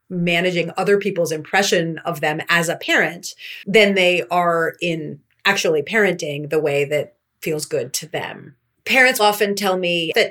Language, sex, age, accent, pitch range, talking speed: English, female, 30-49, American, 170-220 Hz, 155 wpm